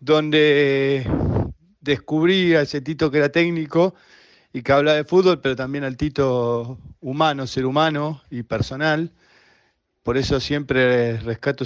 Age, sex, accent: 40-59, male, Argentinian